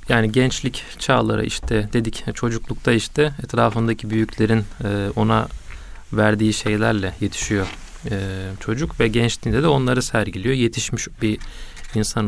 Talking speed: 110 wpm